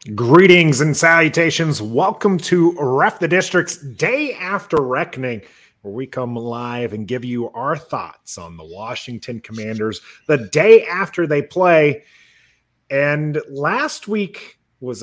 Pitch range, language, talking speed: 125-180 Hz, English, 130 wpm